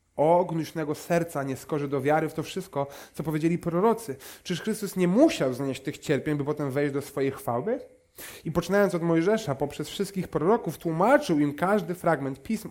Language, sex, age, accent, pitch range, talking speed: Polish, male, 30-49, native, 125-170 Hz, 175 wpm